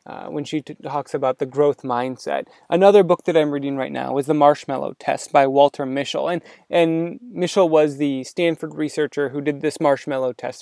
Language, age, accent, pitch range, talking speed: English, 20-39, American, 145-185 Hz, 190 wpm